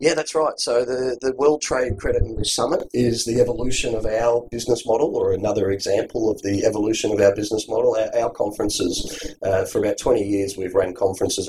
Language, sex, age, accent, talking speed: English, male, 30-49, Australian, 205 wpm